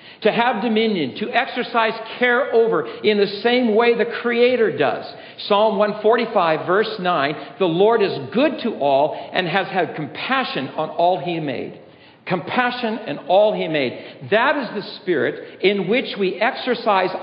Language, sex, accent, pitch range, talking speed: English, male, American, 145-235 Hz, 155 wpm